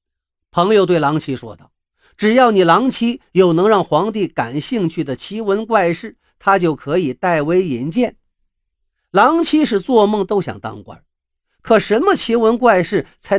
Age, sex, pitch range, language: 50-69, male, 155-220 Hz, Chinese